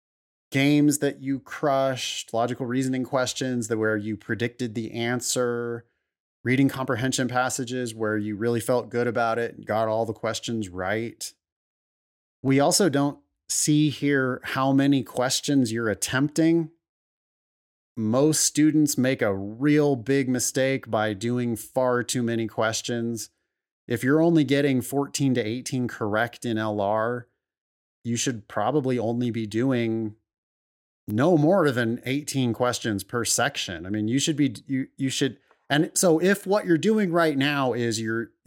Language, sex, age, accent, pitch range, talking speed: English, male, 30-49, American, 105-130 Hz, 145 wpm